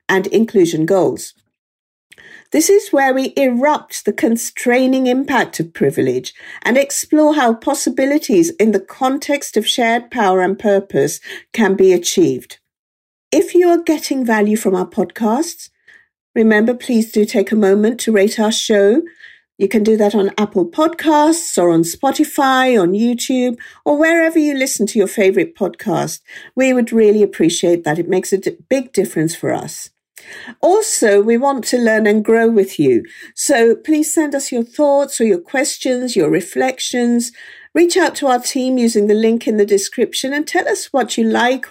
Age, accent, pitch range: 50-69, British, 200-280 Hz